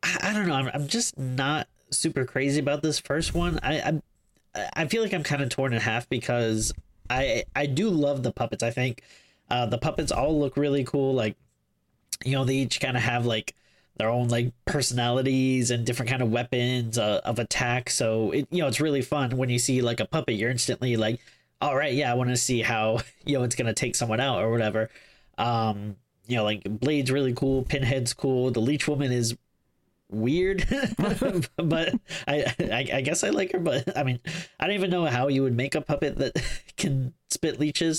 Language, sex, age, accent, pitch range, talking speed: English, male, 20-39, American, 115-145 Hz, 205 wpm